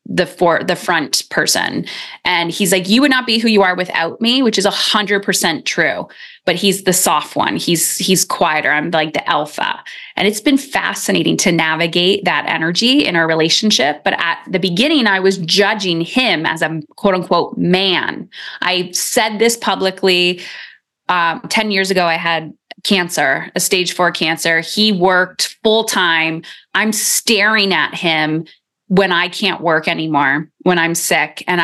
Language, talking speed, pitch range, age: English, 175 wpm, 175-225 Hz, 20-39